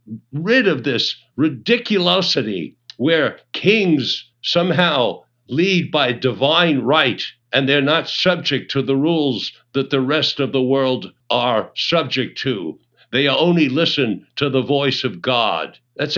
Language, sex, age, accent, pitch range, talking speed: English, male, 60-79, American, 135-180 Hz, 135 wpm